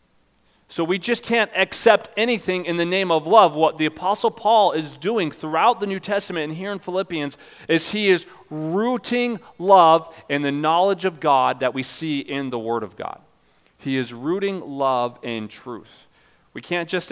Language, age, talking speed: English, 40-59, 180 wpm